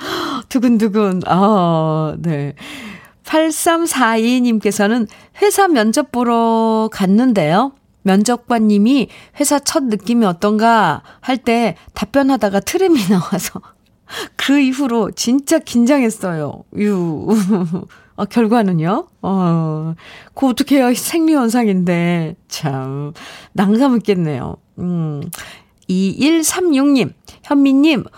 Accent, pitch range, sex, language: native, 180-245 Hz, female, Korean